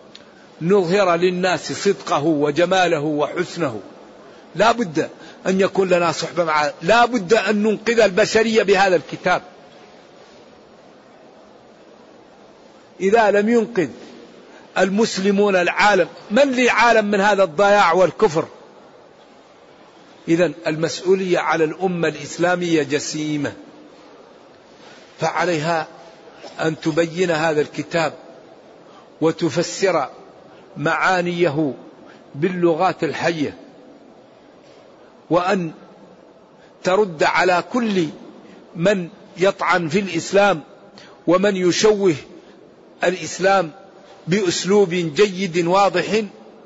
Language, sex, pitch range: Arabic, male, 160-200 Hz